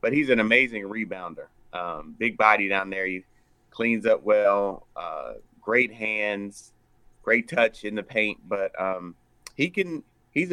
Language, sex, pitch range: English, male, 100-120 Hz